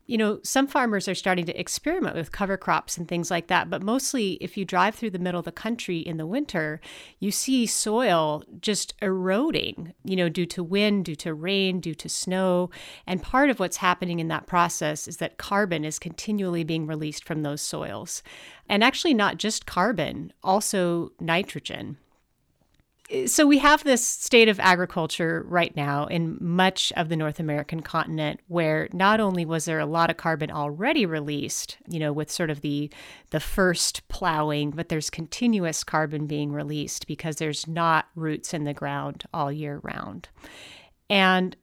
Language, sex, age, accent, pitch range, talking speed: English, female, 30-49, American, 165-210 Hz, 175 wpm